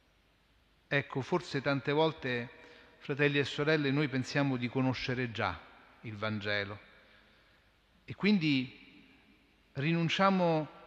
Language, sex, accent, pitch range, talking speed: Italian, male, native, 110-155 Hz, 95 wpm